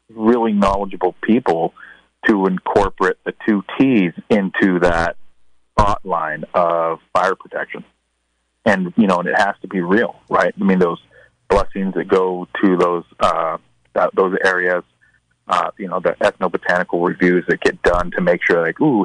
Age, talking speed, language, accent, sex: 30-49, 160 wpm, English, American, male